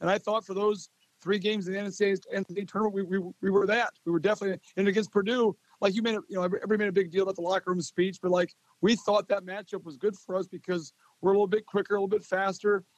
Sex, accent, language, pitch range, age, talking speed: male, American, English, 185-210 Hz, 40-59, 270 wpm